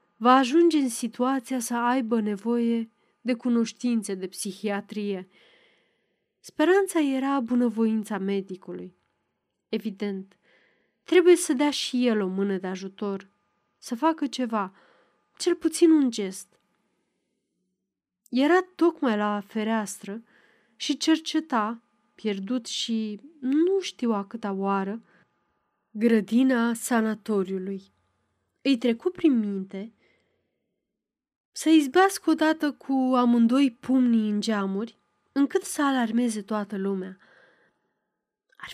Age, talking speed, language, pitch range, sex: 20-39, 100 wpm, Romanian, 200-265 Hz, female